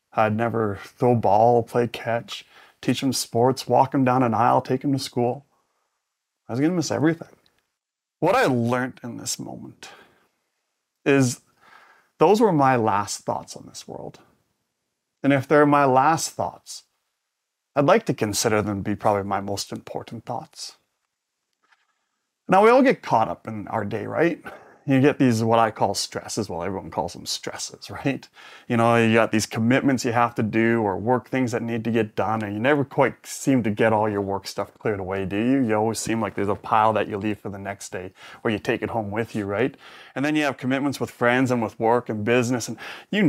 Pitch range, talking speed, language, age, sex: 110-130 Hz, 205 wpm, English, 30-49, male